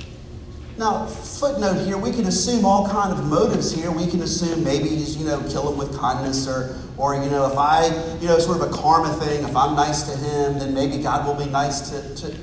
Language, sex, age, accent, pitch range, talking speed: English, male, 40-59, American, 165-210 Hz, 230 wpm